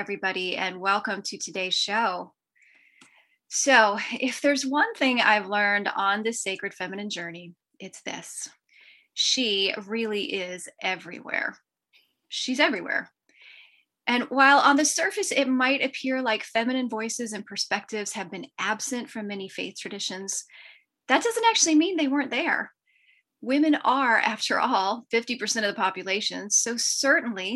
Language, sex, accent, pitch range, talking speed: English, female, American, 190-260 Hz, 135 wpm